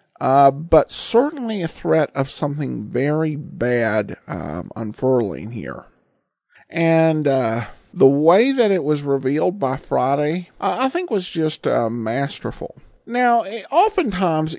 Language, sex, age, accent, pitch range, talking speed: English, male, 50-69, American, 130-185 Hz, 130 wpm